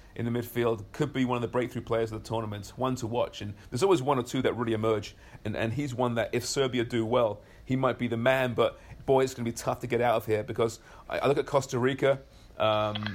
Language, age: English, 30-49